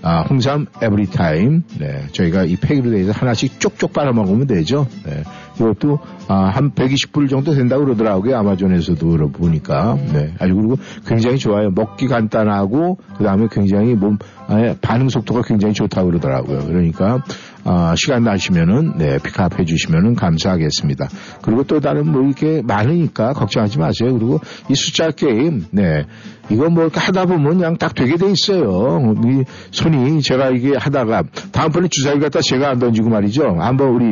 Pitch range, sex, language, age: 105-145 Hz, male, Korean, 60-79